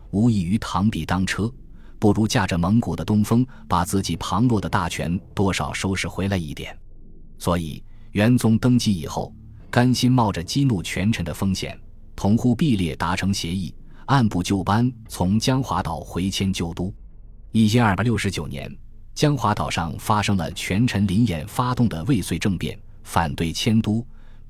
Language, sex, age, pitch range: Chinese, male, 20-39, 85-115 Hz